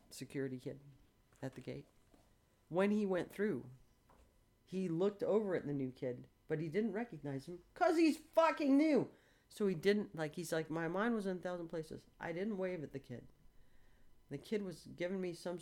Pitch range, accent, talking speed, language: 115-165 Hz, American, 190 wpm, English